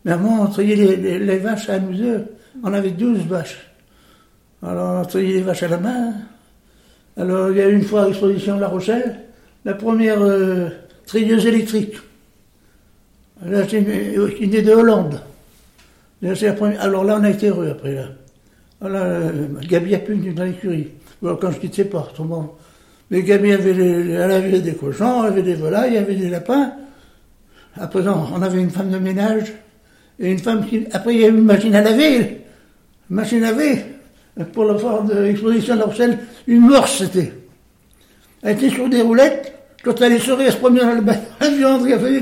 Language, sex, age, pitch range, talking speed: French, male, 60-79, 185-230 Hz, 190 wpm